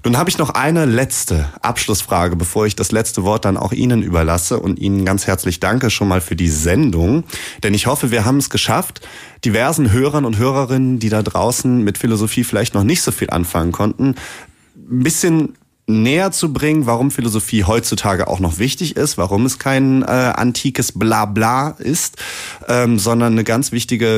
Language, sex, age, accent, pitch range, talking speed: German, male, 30-49, German, 105-140 Hz, 180 wpm